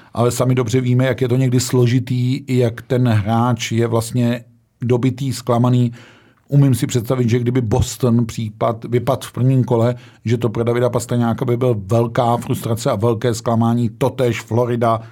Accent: native